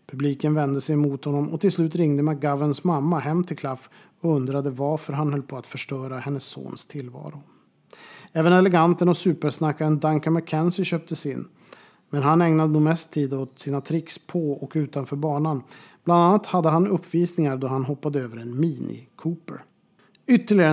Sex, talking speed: male, 170 wpm